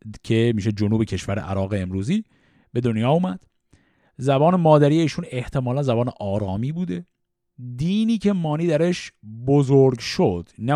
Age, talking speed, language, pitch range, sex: 50-69, 130 wpm, Persian, 110-170 Hz, male